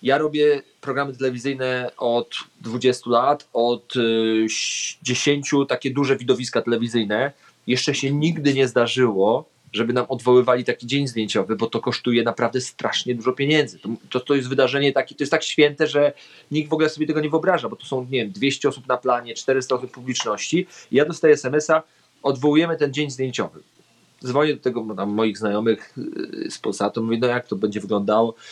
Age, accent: 30-49, native